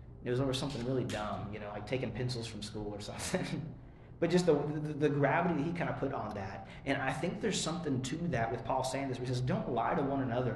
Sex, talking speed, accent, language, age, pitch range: male, 260 wpm, American, English, 30-49, 110-135 Hz